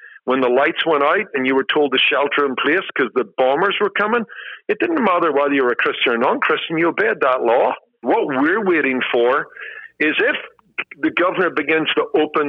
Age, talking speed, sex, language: 50-69, 205 wpm, male, English